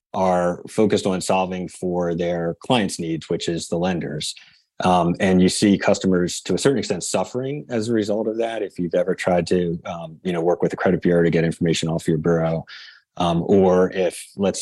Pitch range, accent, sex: 85-100 Hz, American, male